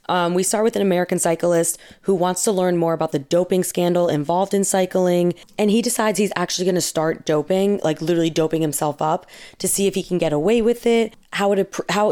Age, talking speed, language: 20-39, 225 wpm, English